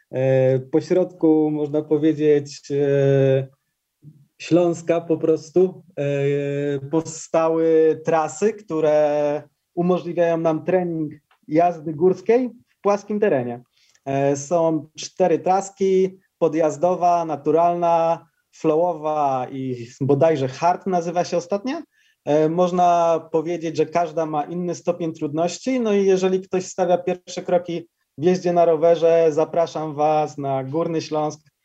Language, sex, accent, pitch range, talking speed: Polish, male, native, 145-175 Hz, 100 wpm